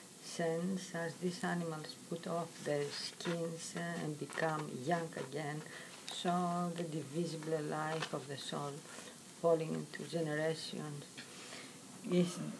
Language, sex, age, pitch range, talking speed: English, female, 50-69, 155-185 Hz, 115 wpm